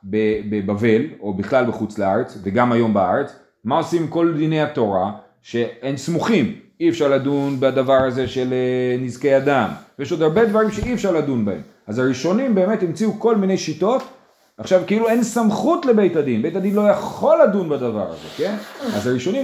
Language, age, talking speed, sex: Hebrew, 30-49, 170 wpm, male